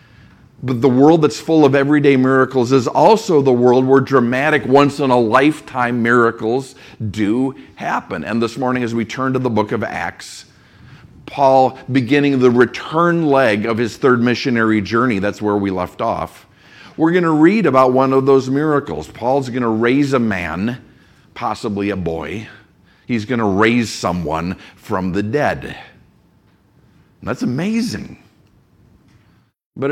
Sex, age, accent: male, 50-69, American